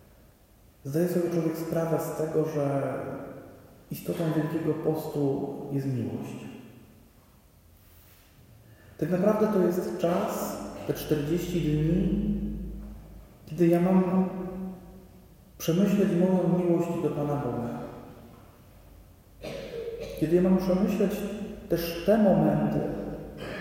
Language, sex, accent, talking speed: Polish, male, native, 90 wpm